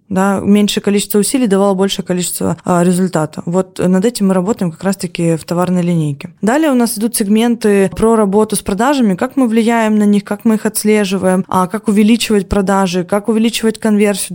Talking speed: 185 wpm